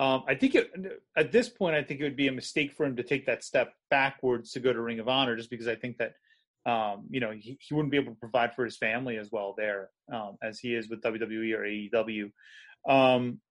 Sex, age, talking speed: male, 30-49, 250 wpm